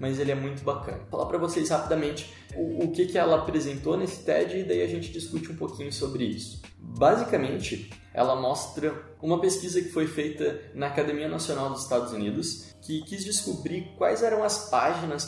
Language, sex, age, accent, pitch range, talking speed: Portuguese, male, 20-39, Brazilian, 120-155 Hz, 190 wpm